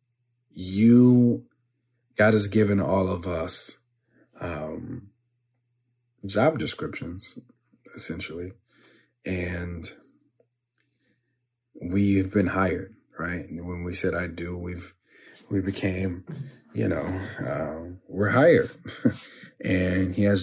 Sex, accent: male, American